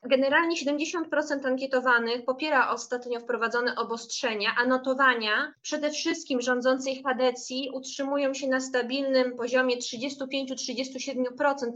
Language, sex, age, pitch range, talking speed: Polish, female, 20-39, 240-270 Hz, 95 wpm